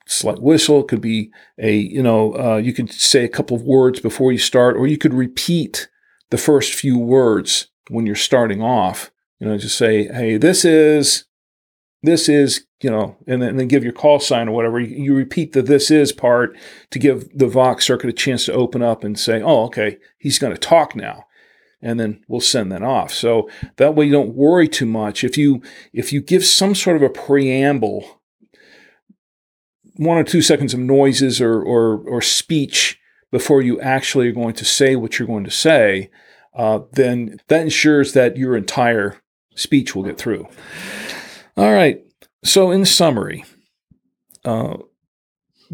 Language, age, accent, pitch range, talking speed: English, 40-59, American, 115-145 Hz, 185 wpm